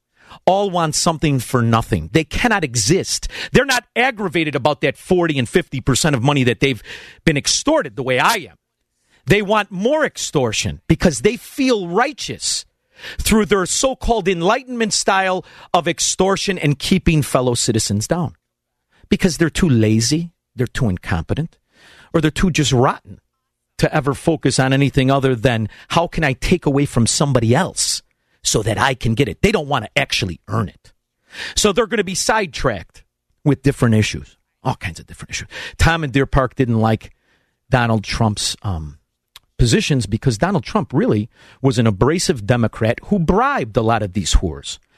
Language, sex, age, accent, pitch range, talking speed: English, male, 40-59, American, 115-175 Hz, 165 wpm